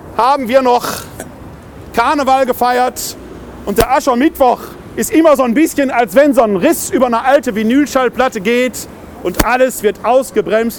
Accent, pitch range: German, 205-265 Hz